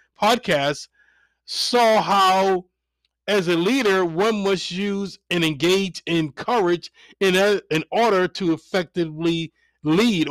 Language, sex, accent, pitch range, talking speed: English, male, American, 160-200 Hz, 115 wpm